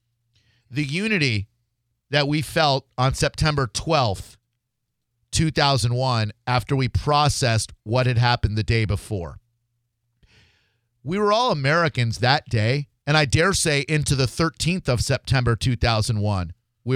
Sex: male